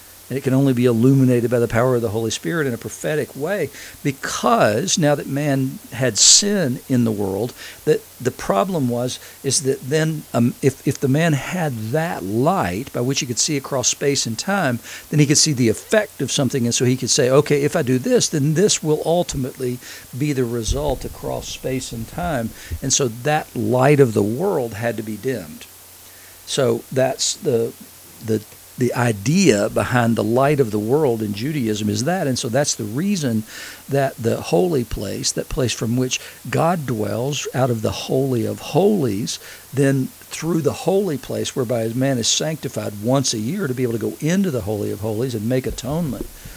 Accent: American